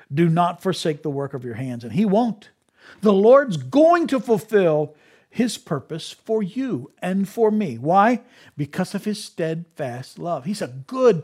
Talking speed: 170 wpm